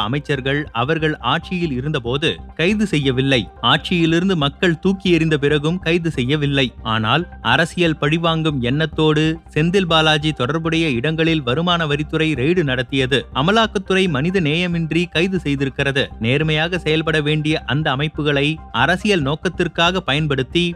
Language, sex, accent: Tamil, male, native